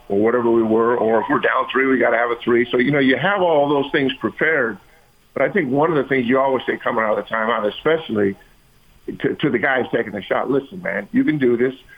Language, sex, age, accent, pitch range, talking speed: English, male, 50-69, American, 125-145 Hz, 265 wpm